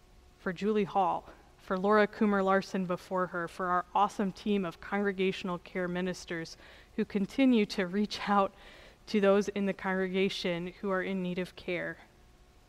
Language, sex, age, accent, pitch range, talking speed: English, female, 20-39, American, 180-205 Hz, 155 wpm